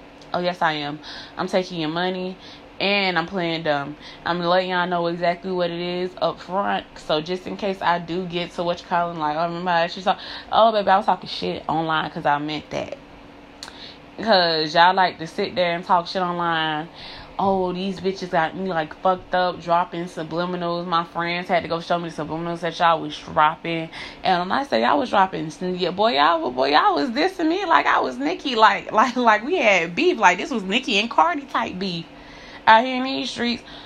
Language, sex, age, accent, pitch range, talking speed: English, female, 20-39, American, 170-205 Hz, 210 wpm